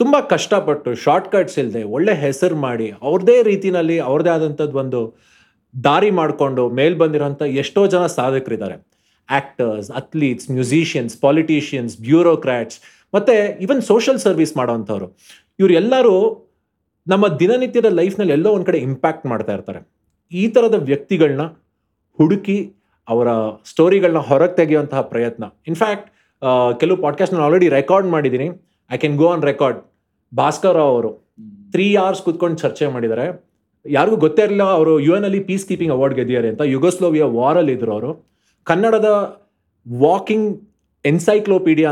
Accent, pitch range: native, 130-190 Hz